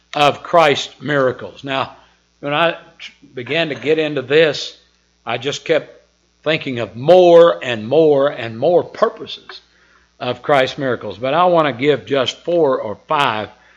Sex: male